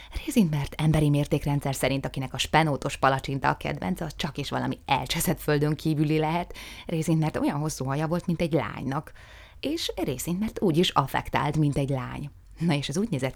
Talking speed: 190 wpm